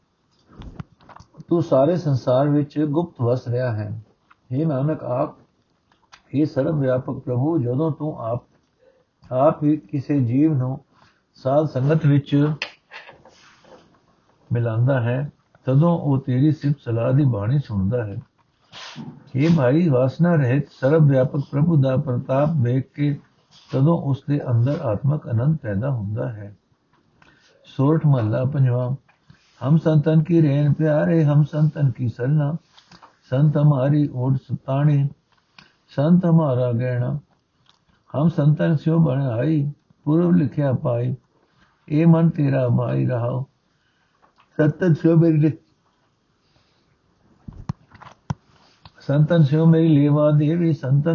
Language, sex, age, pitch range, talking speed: Punjabi, male, 60-79, 130-155 Hz, 105 wpm